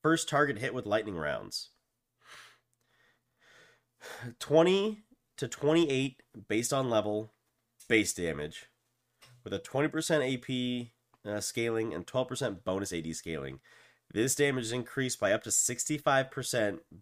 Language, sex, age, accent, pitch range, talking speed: English, male, 30-49, American, 95-125 Hz, 115 wpm